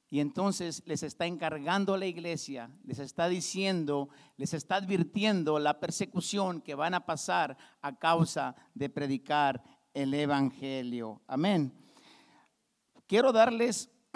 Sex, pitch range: male, 155-210 Hz